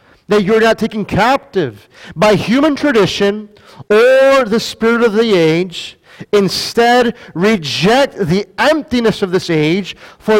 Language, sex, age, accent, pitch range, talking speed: English, male, 40-59, American, 165-225 Hz, 125 wpm